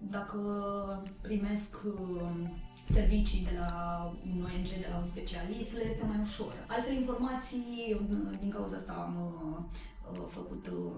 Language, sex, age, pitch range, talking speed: Romanian, female, 20-39, 175-215 Hz, 120 wpm